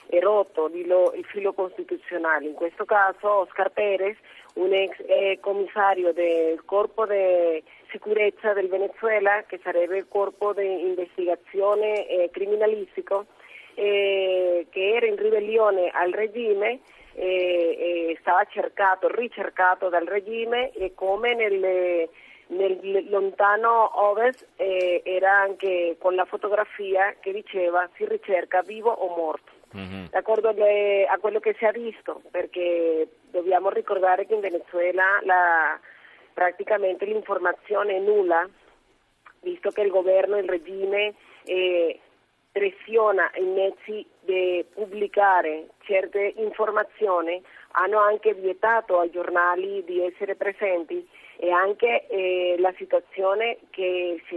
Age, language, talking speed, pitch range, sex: 40-59, Italian, 120 wpm, 180-210 Hz, female